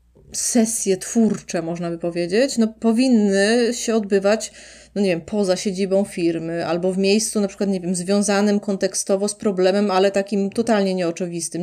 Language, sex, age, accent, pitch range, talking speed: Polish, female, 30-49, native, 185-215 Hz, 155 wpm